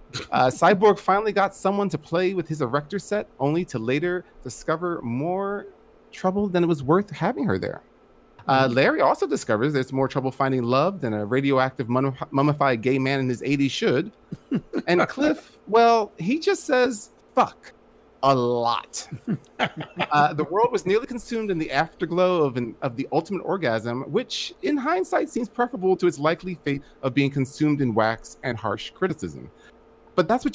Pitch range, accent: 130-185 Hz, American